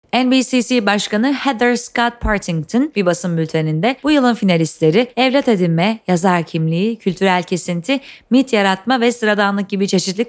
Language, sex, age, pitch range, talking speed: Turkish, female, 30-49, 180-245 Hz, 135 wpm